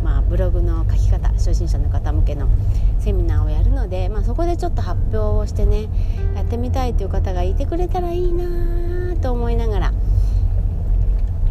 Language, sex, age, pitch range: Japanese, female, 30-49, 85-95 Hz